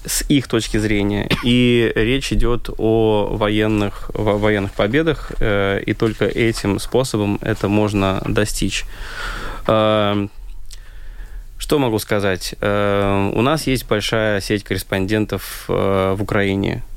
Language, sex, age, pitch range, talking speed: Russian, male, 20-39, 100-115 Hz, 115 wpm